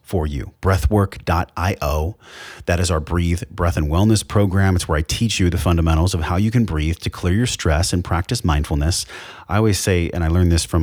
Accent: American